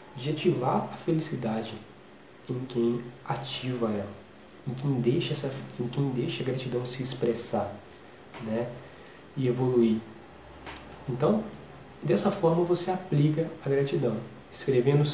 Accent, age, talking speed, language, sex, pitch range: Brazilian, 20-39, 105 wpm, English, male, 120-160 Hz